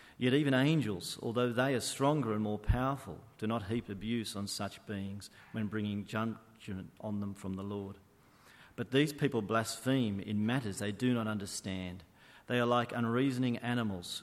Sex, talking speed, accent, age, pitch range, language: male, 170 wpm, Australian, 40-59, 100-125 Hz, English